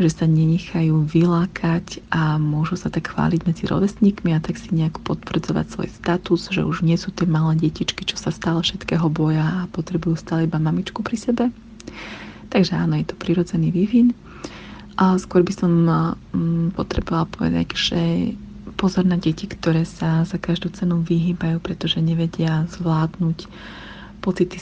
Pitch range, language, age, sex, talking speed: 165-190 Hz, Slovak, 30-49, female, 155 wpm